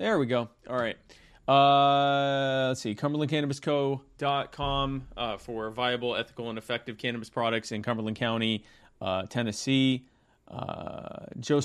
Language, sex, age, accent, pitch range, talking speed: English, male, 30-49, American, 110-135 Hz, 125 wpm